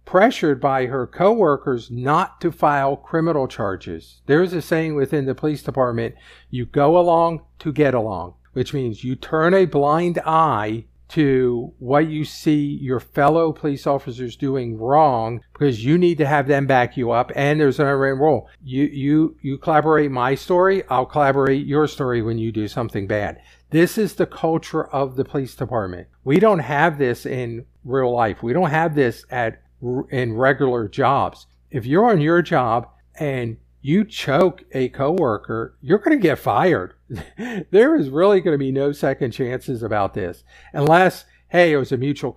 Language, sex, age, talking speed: English, male, 50-69, 175 wpm